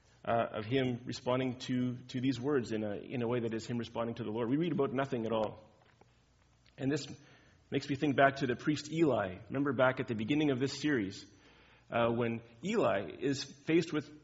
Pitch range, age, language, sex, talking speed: 115-140 Hz, 30-49, English, male, 210 wpm